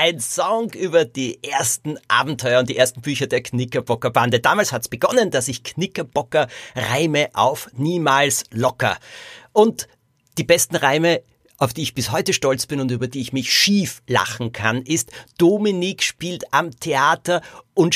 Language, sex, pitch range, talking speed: German, male, 125-165 Hz, 155 wpm